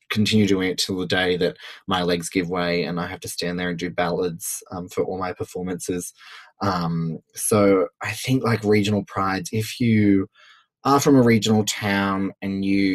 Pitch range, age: 90-110 Hz, 20-39